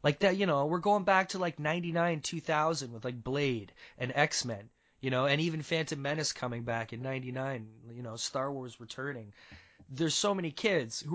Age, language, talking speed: 20-39, English, 195 wpm